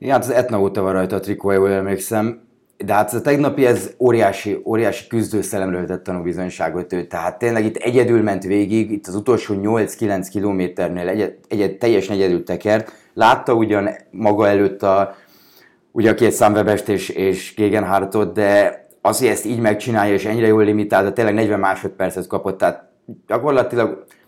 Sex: male